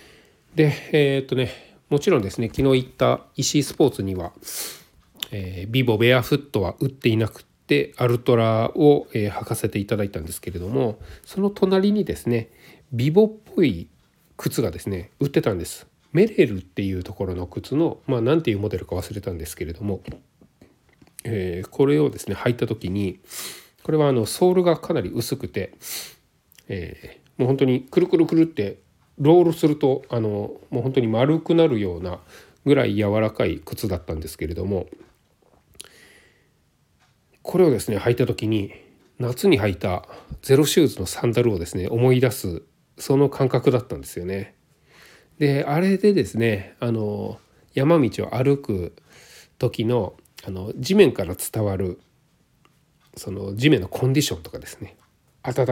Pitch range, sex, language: 100-140 Hz, male, Japanese